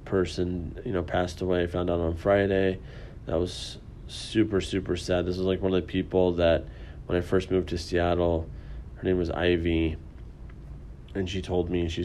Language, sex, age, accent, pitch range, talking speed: English, male, 30-49, American, 85-95 Hz, 185 wpm